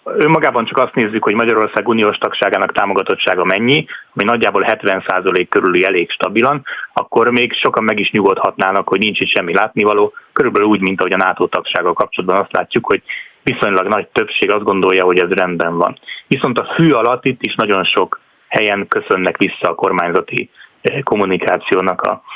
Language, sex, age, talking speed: Hungarian, male, 30-49, 165 wpm